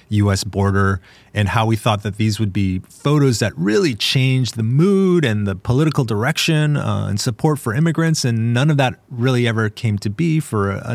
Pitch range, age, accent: 100-135 Hz, 30-49, American